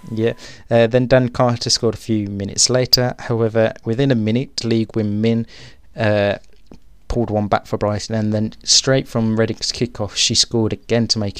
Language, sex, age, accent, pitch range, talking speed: English, male, 20-39, British, 100-115 Hz, 180 wpm